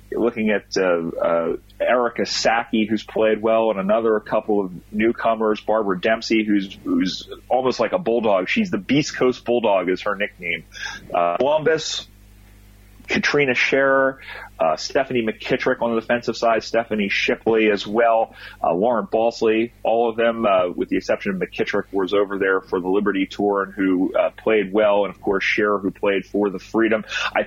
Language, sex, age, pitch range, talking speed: English, male, 30-49, 100-115 Hz, 175 wpm